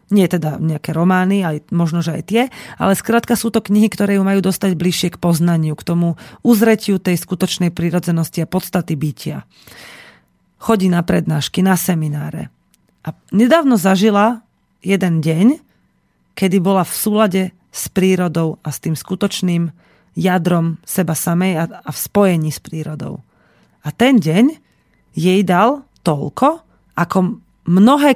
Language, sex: Slovak, female